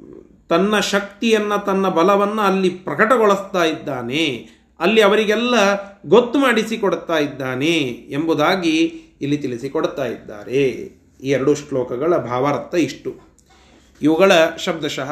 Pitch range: 155-210 Hz